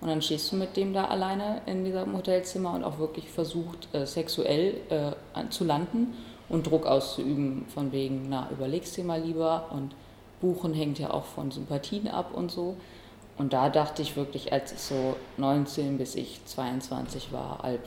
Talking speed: 175 wpm